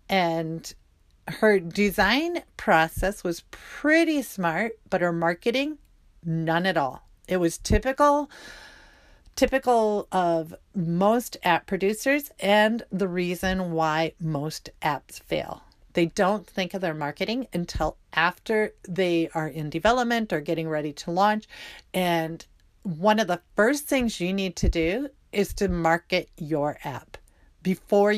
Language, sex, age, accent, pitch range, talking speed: English, female, 40-59, American, 165-210 Hz, 130 wpm